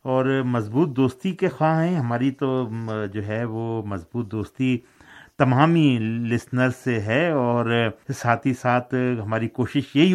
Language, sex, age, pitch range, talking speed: Urdu, male, 50-69, 105-135 Hz, 140 wpm